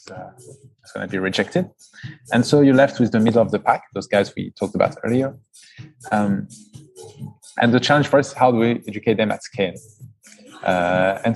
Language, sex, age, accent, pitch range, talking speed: English, male, 20-39, French, 105-135 Hz, 195 wpm